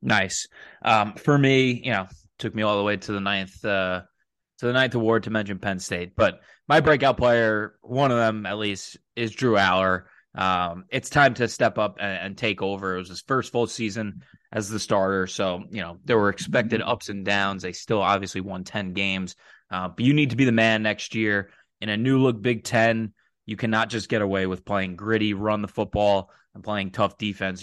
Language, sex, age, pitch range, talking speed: English, male, 20-39, 100-120 Hz, 215 wpm